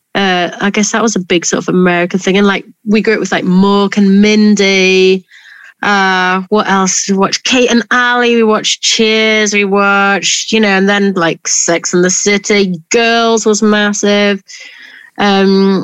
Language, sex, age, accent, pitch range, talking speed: English, female, 30-49, British, 185-215 Hz, 175 wpm